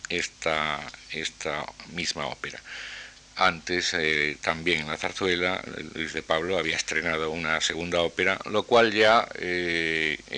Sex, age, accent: male, 50-69, Spanish